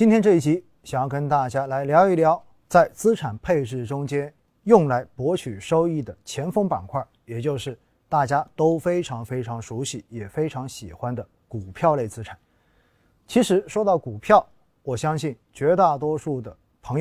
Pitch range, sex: 115-160 Hz, male